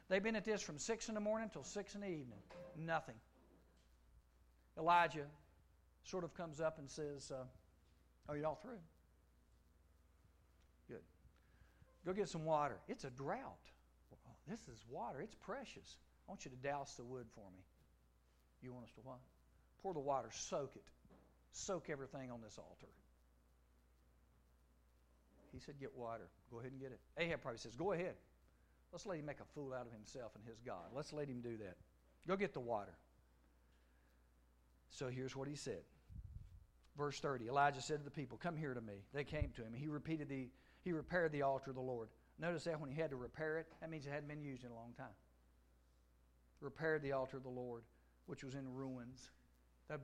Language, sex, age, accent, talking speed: English, male, 60-79, American, 190 wpm